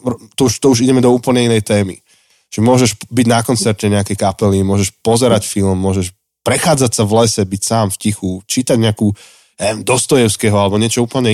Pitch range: 95-115 Hz